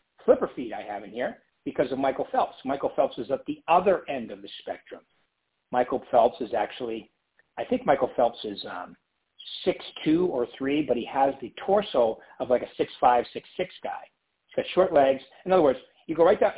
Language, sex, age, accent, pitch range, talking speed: English, male, 50-69, American, 125-180 Hz, 210 wpm